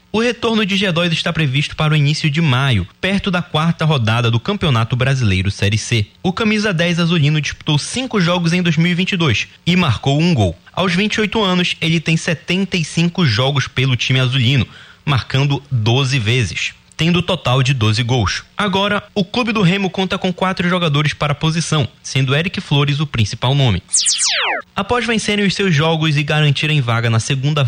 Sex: male